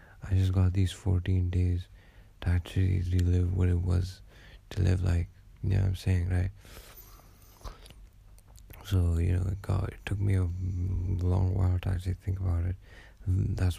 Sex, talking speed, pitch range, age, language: male, 165 wpm, 90-100 Hz, 20-39, English